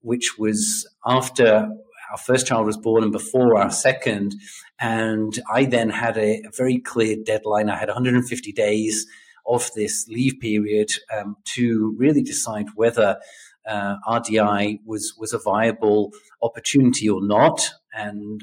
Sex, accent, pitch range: male, British, 105-120 Hz